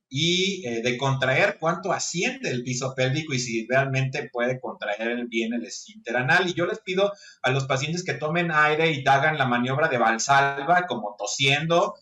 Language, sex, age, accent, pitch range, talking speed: Spanish, male, 30-49, Mexican, 120-165 Hz, 175 wpm